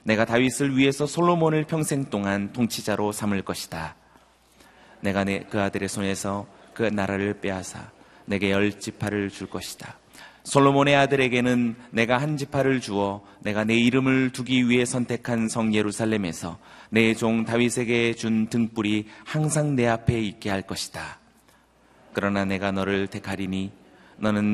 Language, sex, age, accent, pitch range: Korean, male, 30-49, native, 100-125 Hz